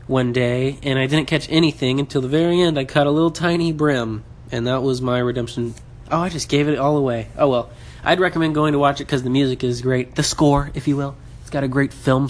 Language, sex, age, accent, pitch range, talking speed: English, male, 20-39, American, 120-145 Hz, 255 wpm